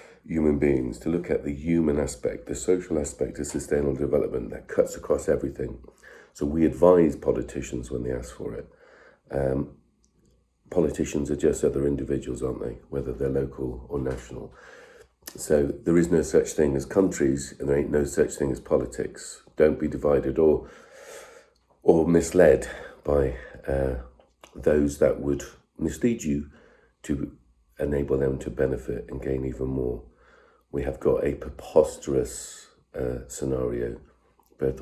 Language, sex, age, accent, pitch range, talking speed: English, male, 40-59, British, 65-75 Hz, 150 wpm